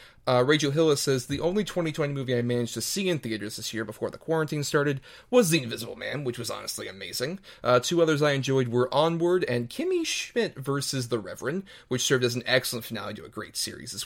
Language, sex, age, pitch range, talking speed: English, male, 30-49, 120-150 Hz, 220 wpm